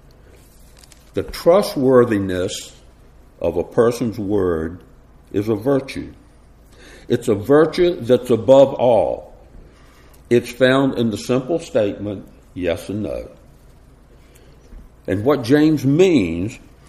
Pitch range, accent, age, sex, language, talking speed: 100-145 Hz, American, 60-79, male, English, 100 wpm